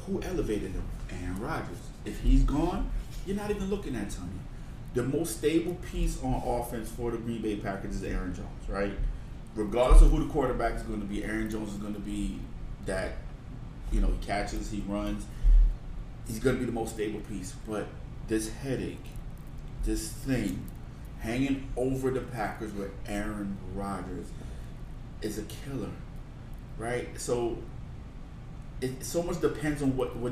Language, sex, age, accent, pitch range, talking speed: English, male, 30-49, American, 105-135 Hz, 165 wpm